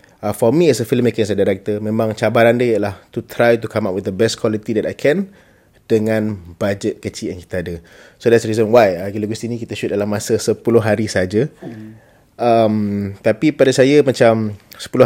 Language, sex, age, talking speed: Malay, male, 30-49, 210 wpm